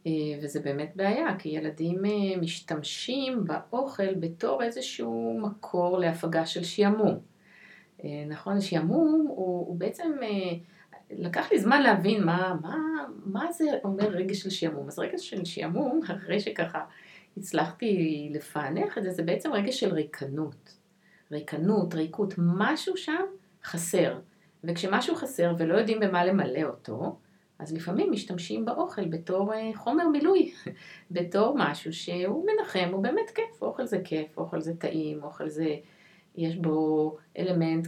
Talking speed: 130 wpm